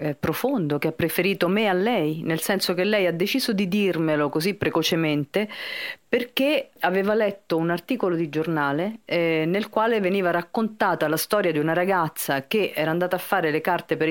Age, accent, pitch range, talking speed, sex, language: 40-59, native, 160-220 Hz, 180 wpm, female, Italian